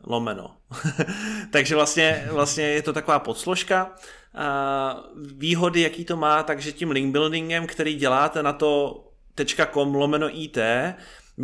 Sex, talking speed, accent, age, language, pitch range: male, 130 wpm, native, 30-49, Czech, 135-155 Hz